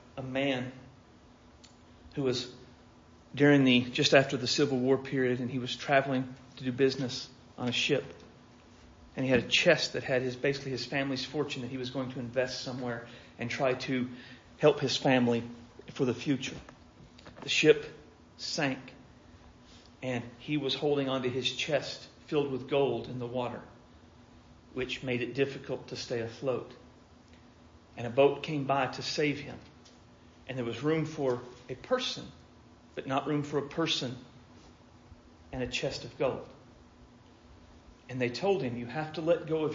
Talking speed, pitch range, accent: 165 wpm, 120-140 Hz, American